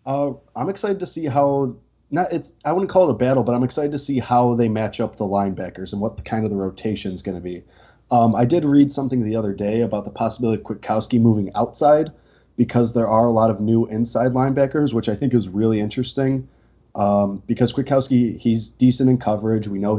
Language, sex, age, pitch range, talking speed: English, male, 20-39, 105-125 Hz, 225 wpm